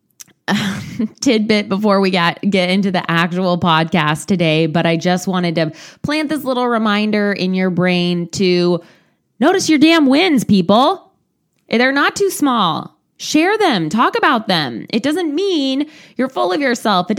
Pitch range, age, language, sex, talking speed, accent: 175-265 Hz, 20-39, English, female, 155 wpm, American